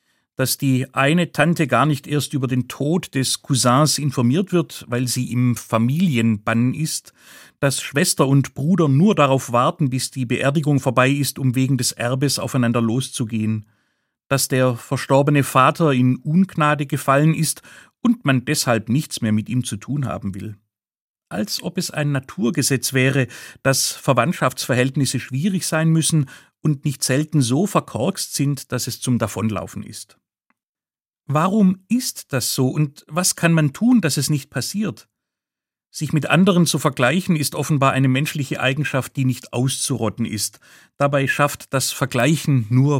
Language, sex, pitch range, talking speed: German, male, 125-155 Hz, 155 wpm